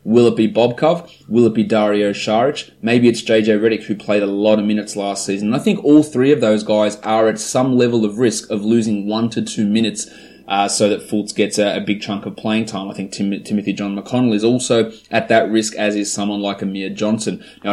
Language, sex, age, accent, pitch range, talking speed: English, male, 20-39, Australian, 100-115 Hz, 235 wpm